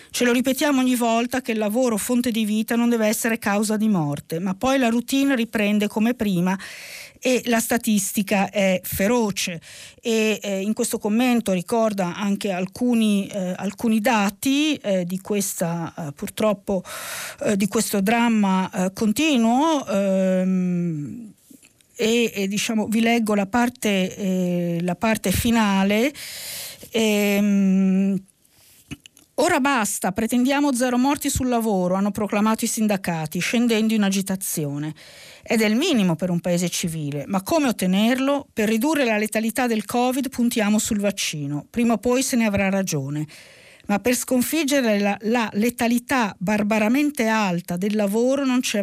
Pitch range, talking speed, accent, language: 190-240 Hz, 145 wpm, native, Italian